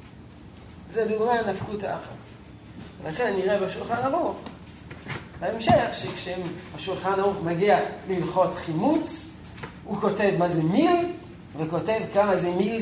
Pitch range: 155-200 Hz